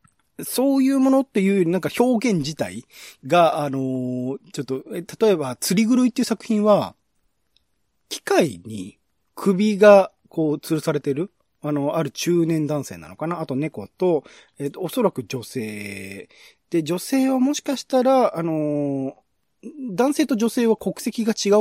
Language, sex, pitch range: Japanese, male, 130-195 Hz